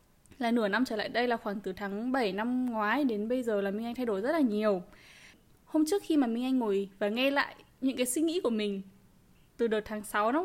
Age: 10-29